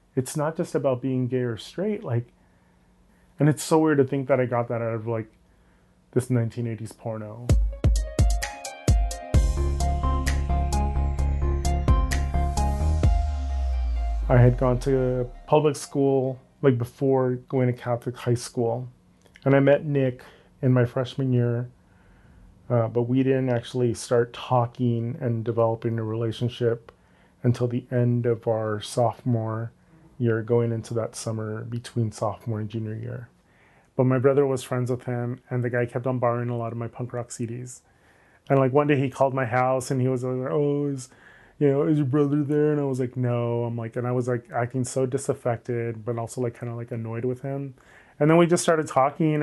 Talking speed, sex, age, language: 170 wpm, male, 30-49, English